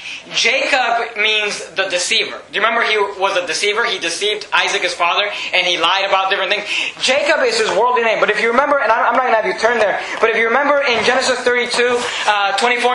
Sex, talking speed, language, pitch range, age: male, 225 wpm, English, 210-255 Hz, 20-39